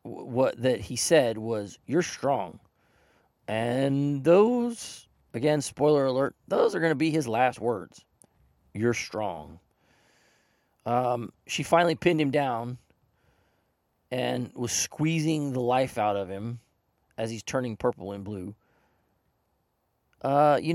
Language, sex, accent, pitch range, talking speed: English, male, American, 105-150 Hz, 125 wpm